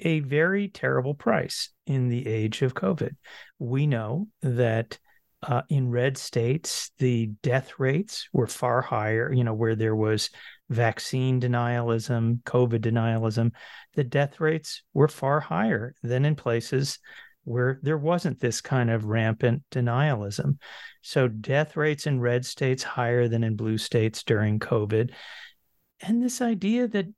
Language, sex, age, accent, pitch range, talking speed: English, male, 40-59, American, 120-155 Hz, 145 wpm